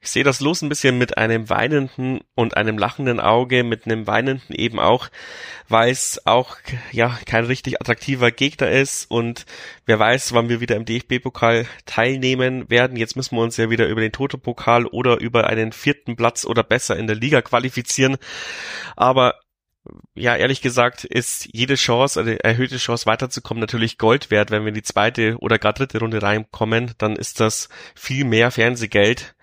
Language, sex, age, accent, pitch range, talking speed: German, male, 30-49, German, 110-125 Hz, 175 wpm